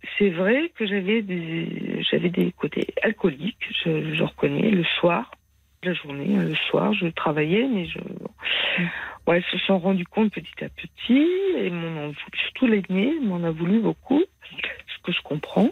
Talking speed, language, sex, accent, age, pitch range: 155 wpm, French, female, French, 50-69, 170-210 Hz